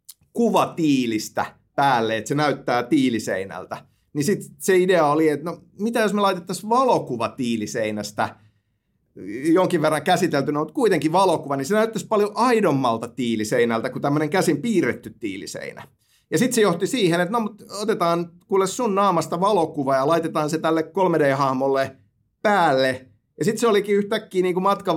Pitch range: 140-190 Hz